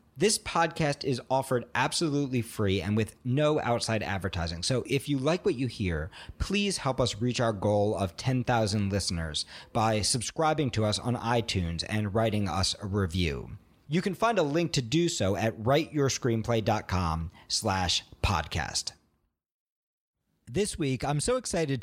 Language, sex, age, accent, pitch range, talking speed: English, male, 40-59, American, 105-155 Hz, 150 wpm